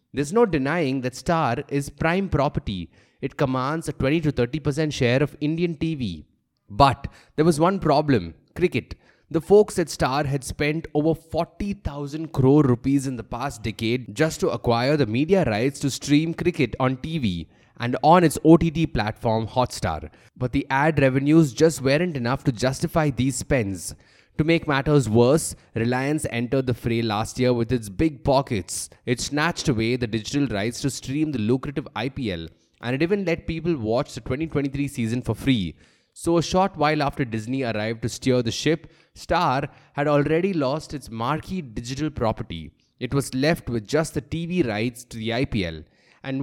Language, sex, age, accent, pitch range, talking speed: English, male, 20-39, Indian, 120-155 Hz, 170 wpm